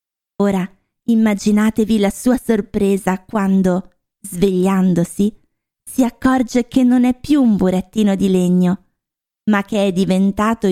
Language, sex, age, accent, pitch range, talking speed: Italian, female, 20-39, native, 185-230 Hz, 120 wpm